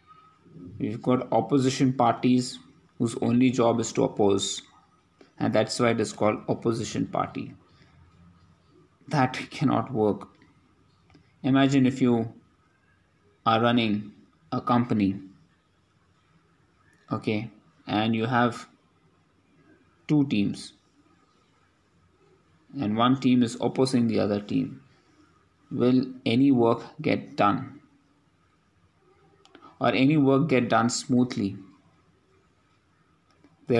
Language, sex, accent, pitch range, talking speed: English, male, Indian, 110-135 Hz, 95 wpm